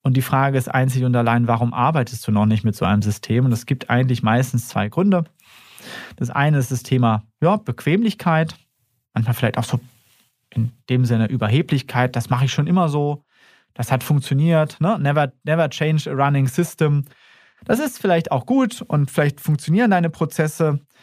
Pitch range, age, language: 125-160 Hz, 30-49, German